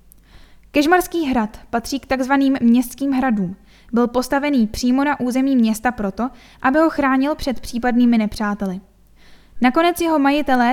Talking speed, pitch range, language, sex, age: 130 wpm, 230-270 Hz, Czech, female, 10-29